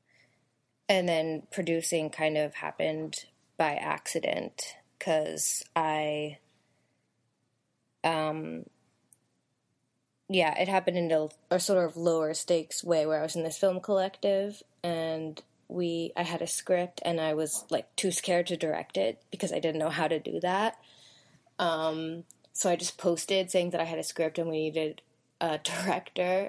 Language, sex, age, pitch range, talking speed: English, female, 20-39, 155-175 Hz, 155 wpm